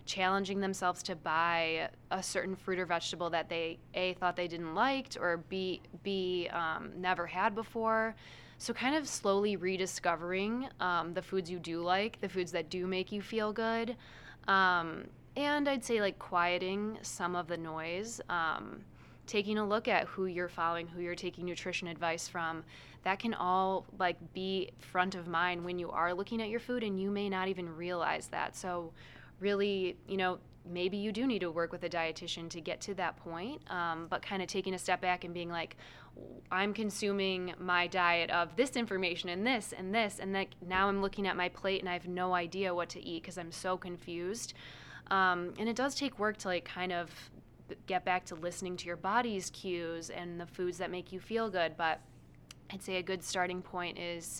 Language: English